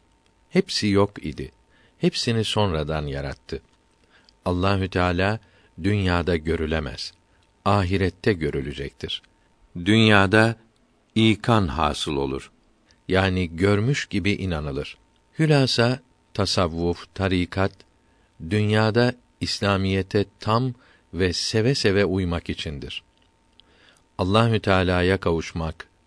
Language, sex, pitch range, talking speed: Turkish, male, 85-105 Hz, 80 wpm